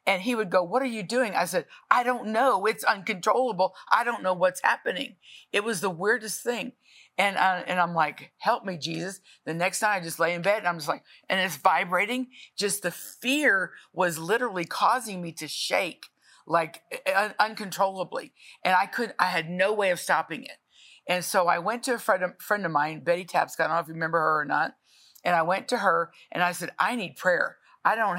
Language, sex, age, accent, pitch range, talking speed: English, female, 50-69, American, 170-220 Hz, 220 wpm